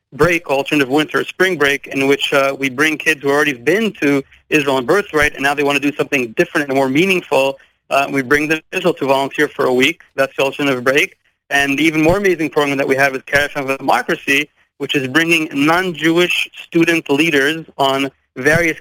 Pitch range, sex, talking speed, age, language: 140-160 Hz, male, 215 wpm, 30-49, English